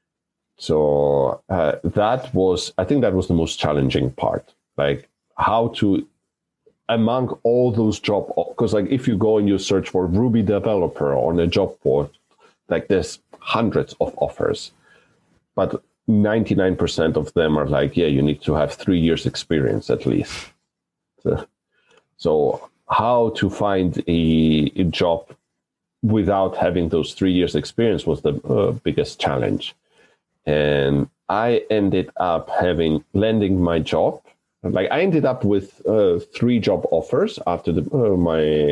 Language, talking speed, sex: English, 150 wpm, male